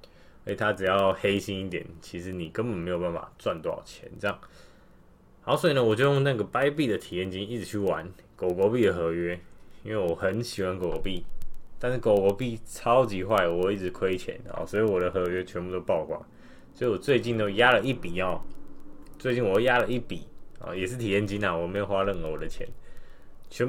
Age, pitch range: 10-29, 95-120 Hz